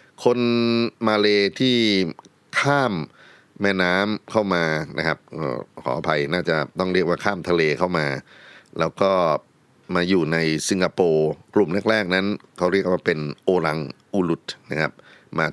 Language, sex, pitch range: Thai, male, 80-100 Hz